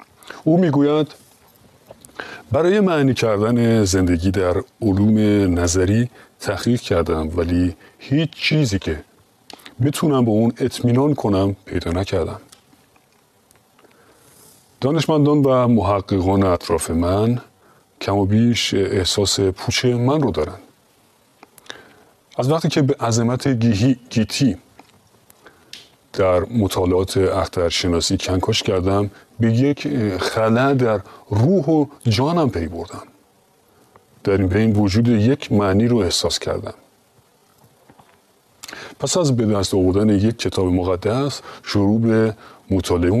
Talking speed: 105 wpm